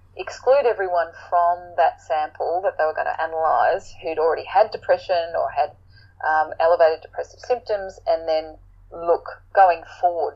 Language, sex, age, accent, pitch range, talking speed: English, female, 30-49, Australian, 160-230 Hz, 150 wpm